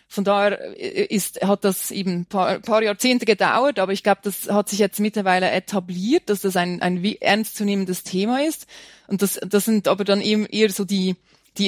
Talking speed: 185 wpm